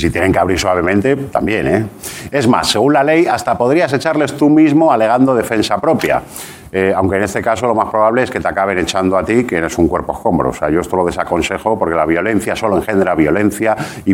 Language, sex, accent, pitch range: Japanese, male, Spanish, 105-130 Hz